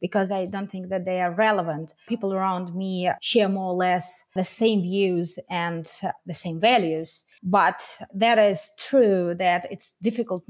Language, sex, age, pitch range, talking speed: English, female, 20-39, 180-225 Hz, 165 wpm